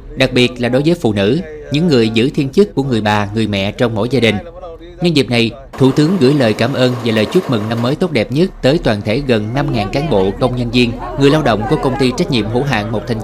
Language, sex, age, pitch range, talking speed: Vietnamese, male, 20-39, 115-145 Hz, 275 wpm